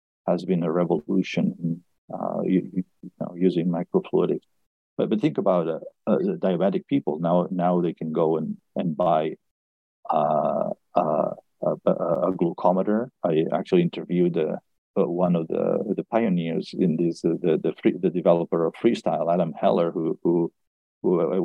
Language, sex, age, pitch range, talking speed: English, male, 50-69, 85-105 Hz, 155 wpm